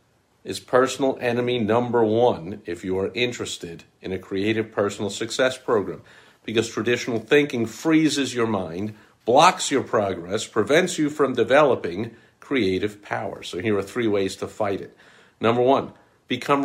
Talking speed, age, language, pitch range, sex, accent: 150 wpm, 50-69, English, 100-130 Hz, male, American